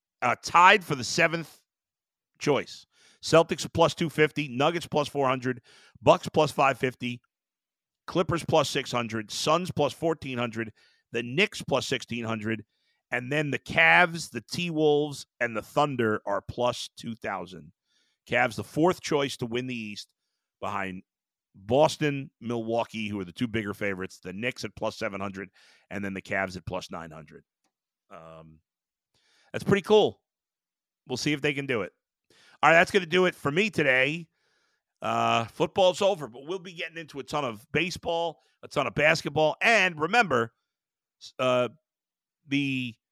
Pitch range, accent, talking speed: 115-165 Hz, American, 150 wpm